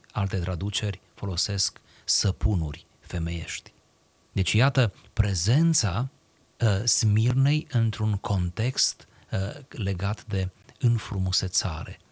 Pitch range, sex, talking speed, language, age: 90-115 Hz, male, 70 wpm, Romanian, 40-59